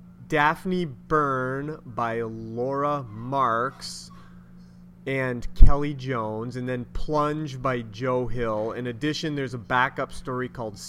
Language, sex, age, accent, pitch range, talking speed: English, male, 30-49, American, 120-140 Hz, 115 wpm